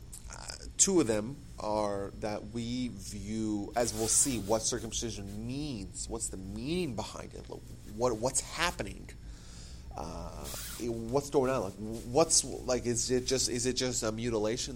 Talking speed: 145 wpm